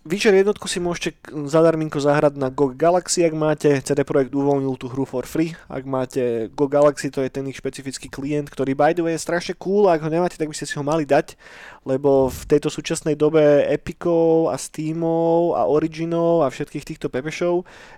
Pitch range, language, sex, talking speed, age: 135-160 Hz, Slovak, male, 200 wpm, 20-39